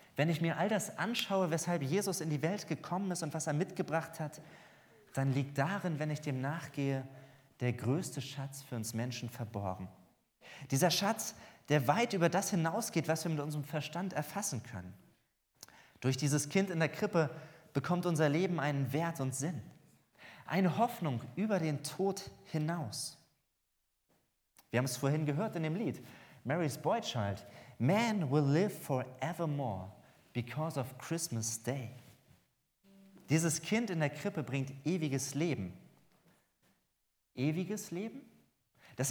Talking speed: 145 wpm